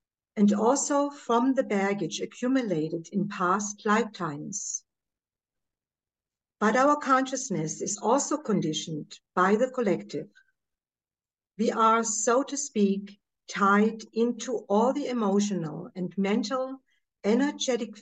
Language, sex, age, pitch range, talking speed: English, female, 60-79, 200-240 Hz, 105 wpm